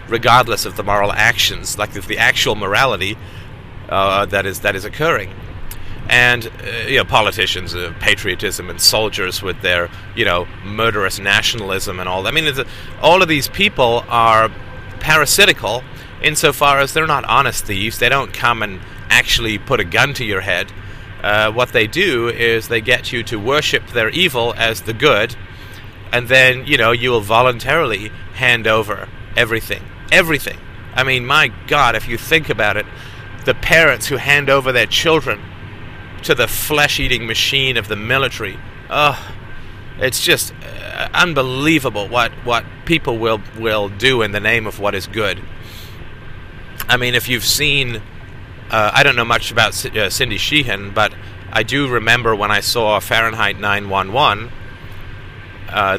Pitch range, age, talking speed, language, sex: 100-125 Hz, 30-49, 160 wpm, English, male